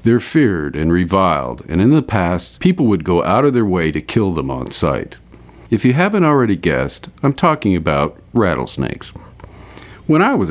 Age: 50-69